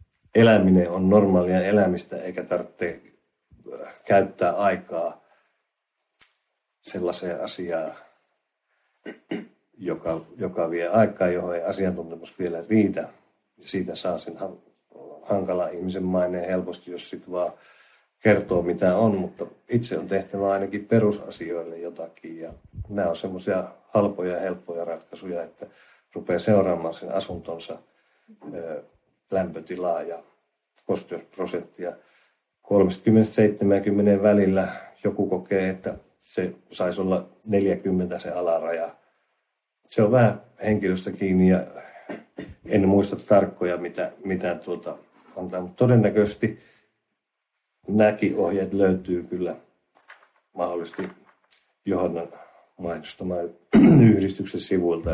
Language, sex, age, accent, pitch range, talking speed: Finnish, male, 50-69, native, 85-100 Hz, 100 wpm